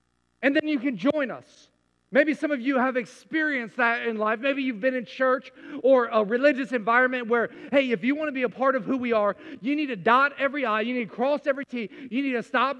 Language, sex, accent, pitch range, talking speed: English, male, American, 220-275 Hz, 250 wpm